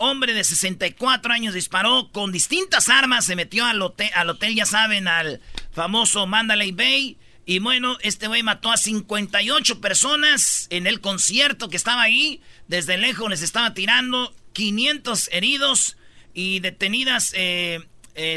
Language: Spanish